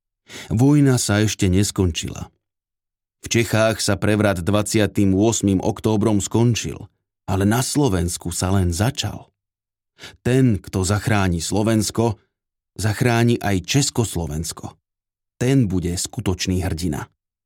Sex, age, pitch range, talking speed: male, 30-49, 95-110 Hz, 95 wpm